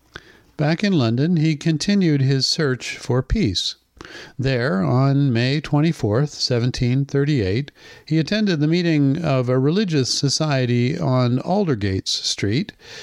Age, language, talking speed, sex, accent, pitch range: 50-69, English, 115 wpm, male, American, 115-155 Hz